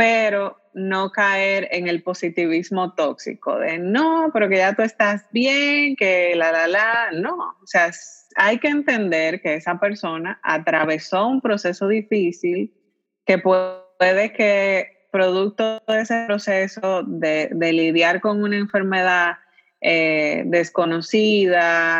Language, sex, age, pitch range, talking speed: Spanish, female, 20-39, 165-205 Hz, 130 wpm